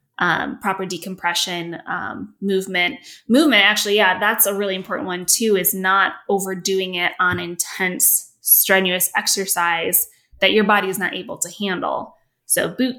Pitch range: 180-215 Hz